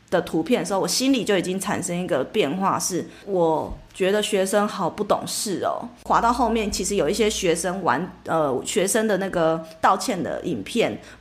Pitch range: 195-255 Hz